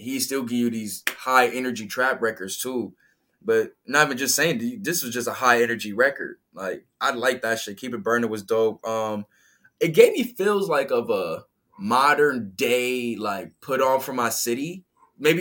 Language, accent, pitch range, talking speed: English, American, 115-160 Hz, 190 wpm